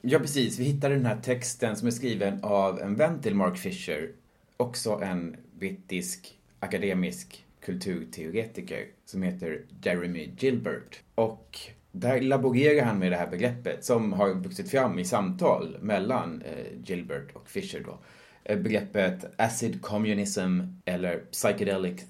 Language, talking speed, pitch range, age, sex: Swedish, 135 wpm, 95-130 Hz, 30-49, male